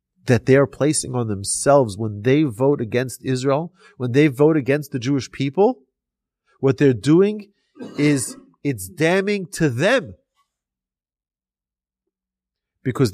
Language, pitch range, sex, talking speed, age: English, 110-155 Hz, male, 125 wpm, 30-49